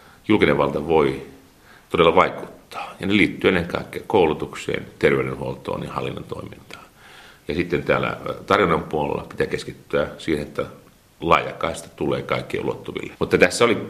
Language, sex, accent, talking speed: Finnish, male, native, 135 wpm